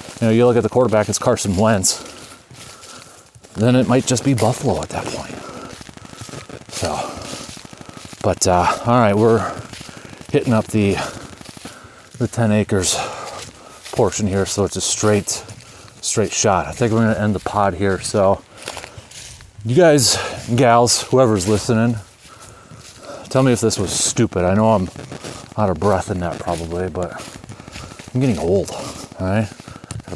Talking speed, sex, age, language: 150 wpm, male, 30-49, English